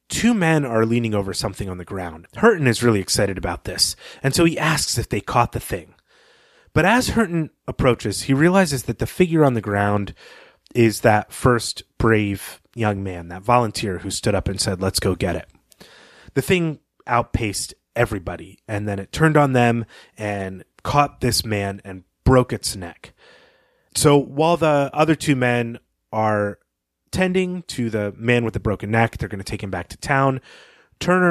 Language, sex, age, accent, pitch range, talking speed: English, male, 30-49, American, 100-135 Hz, 180 wpm